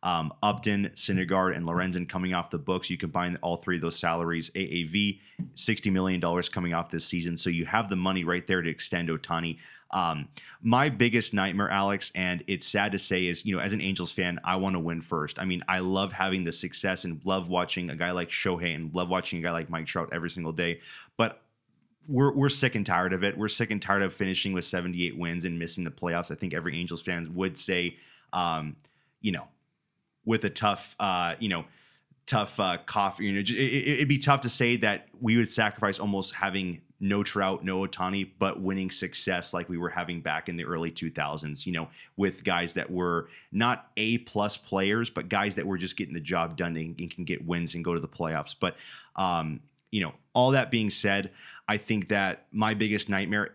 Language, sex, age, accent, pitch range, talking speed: English, male, 20-39, American, 85-105 Hz, 215 wpm